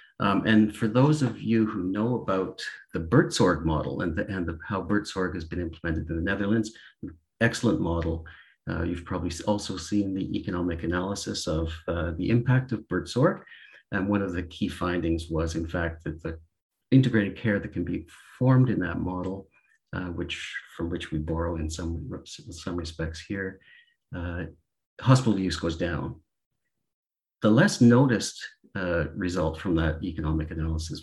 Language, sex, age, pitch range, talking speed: English, male, 50-69, 85-110 Hz, 165 wpm